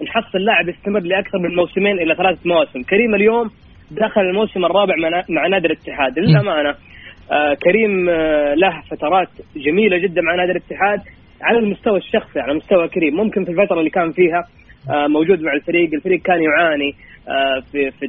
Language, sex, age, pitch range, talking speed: Arabic, female, 20-39, 150-195 Hz, 165 wpm